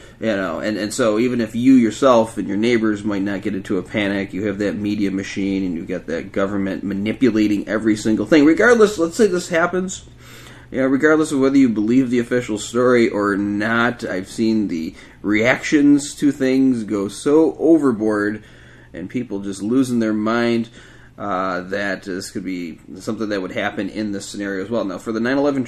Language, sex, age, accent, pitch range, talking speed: English, male, 30-49, American, 100-130 Hz, 190 wpm